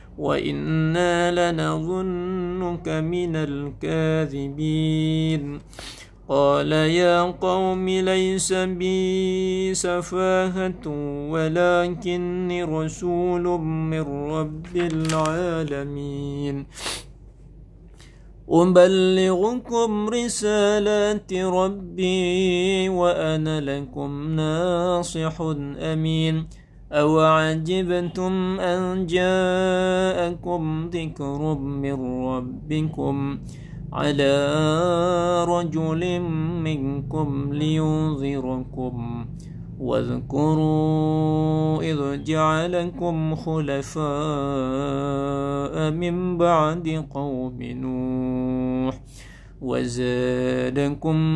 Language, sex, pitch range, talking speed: Indonesian, male, 140-180 Hz, 50 wpm